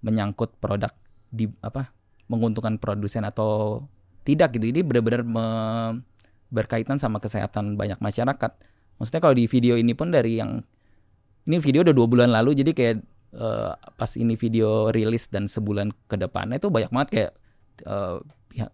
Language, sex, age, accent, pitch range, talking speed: Indonesian, male, 20-39, native, 100-120 Hz, 145 wpm